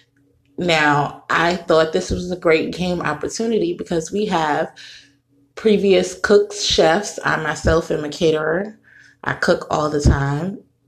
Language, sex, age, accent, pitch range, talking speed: English, female, 20-39, American, 160-210 Hz, 140 wpm